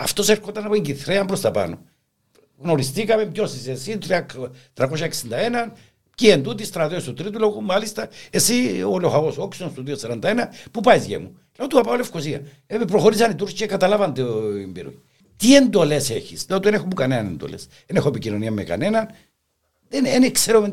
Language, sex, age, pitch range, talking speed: Greek, male, 60-79, 135-210 Hz, 150 wpm